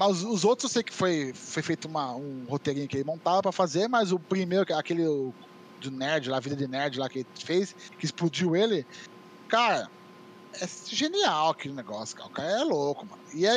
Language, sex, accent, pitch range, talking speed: Portuguese, male, Brazilian, 155-215 Hz, 210 wpm